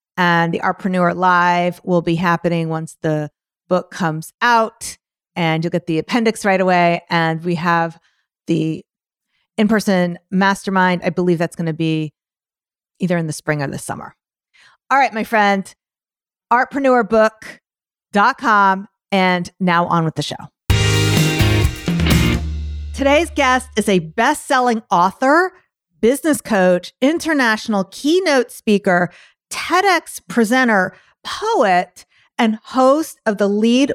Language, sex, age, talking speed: English, female, 40-59, 120 wpm